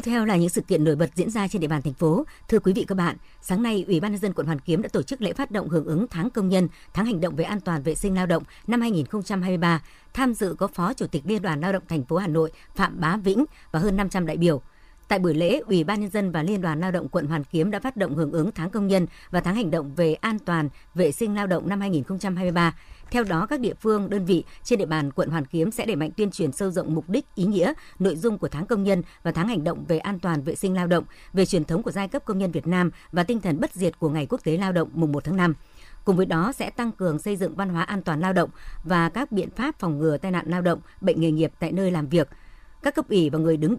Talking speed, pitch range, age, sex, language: 290 wpm, 165-200 Hz, 60-79, male, Vietnamese